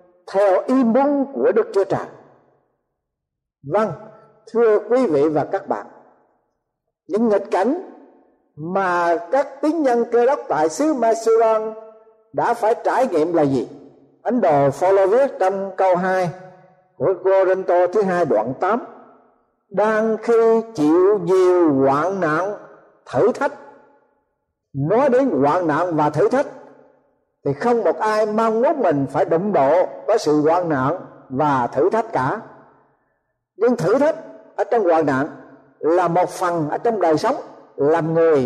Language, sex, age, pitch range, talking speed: Vietnamese, male, 60-79, 170-240 Hz, 145 wpm